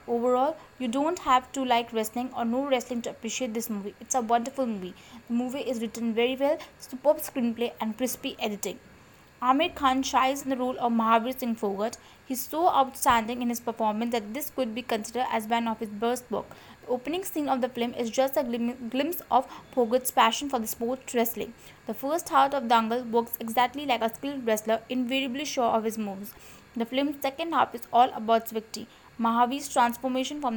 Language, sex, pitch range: English, female, 230-265 Hz